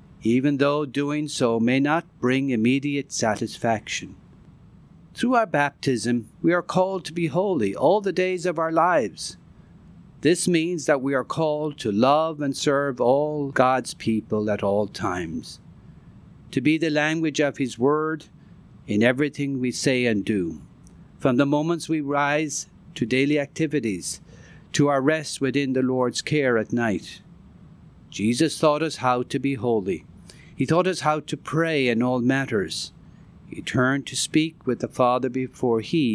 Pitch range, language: 120-155 Hz, English